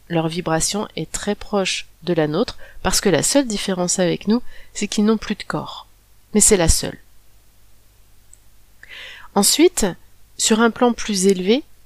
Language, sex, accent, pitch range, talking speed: French, female, French, 175-245 Hz, 155 wpm